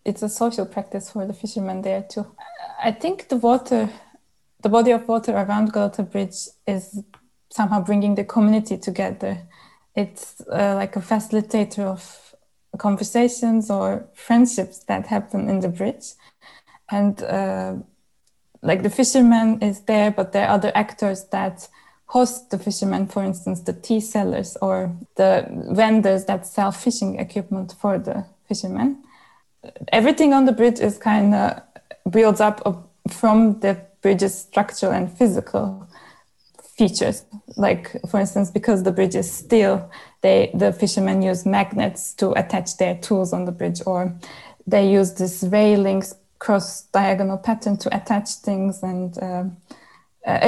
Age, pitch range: 20-39, 190-220 Hz